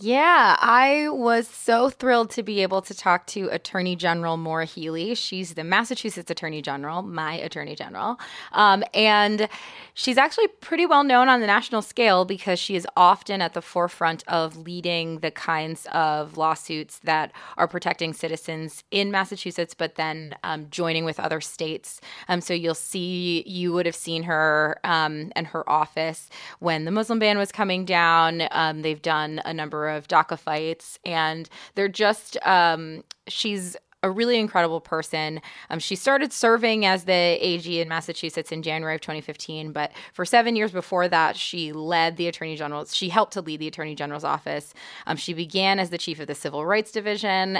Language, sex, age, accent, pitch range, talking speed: English, female, 20-39, American, 160-200 Hz, 180 wpm